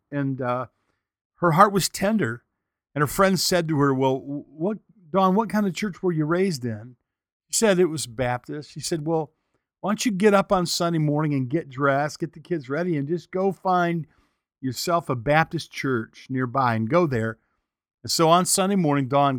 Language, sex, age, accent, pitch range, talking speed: English, male, 50-69, American, 130-165 Hz, 200 wpm